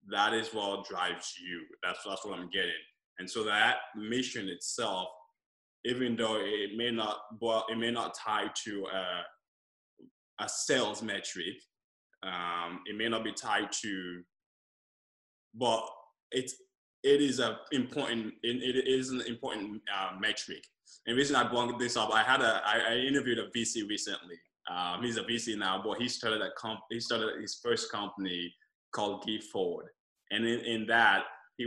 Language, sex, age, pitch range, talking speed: English, male, 20-39, 95-120 Hz, 170 wpm